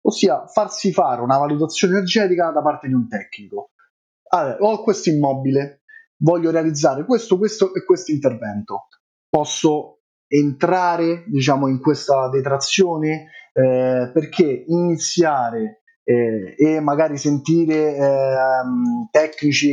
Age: 30-49